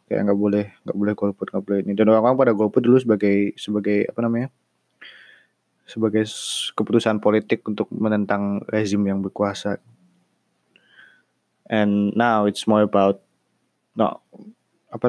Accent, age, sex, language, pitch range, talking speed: native, 20-39, male, Indonesian, 100-115 Hz, 130 wpm